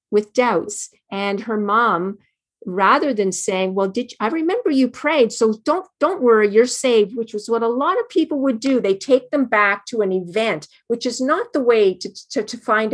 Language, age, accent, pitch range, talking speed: English, 50-69, American, 185-250 Hz, 215 wpm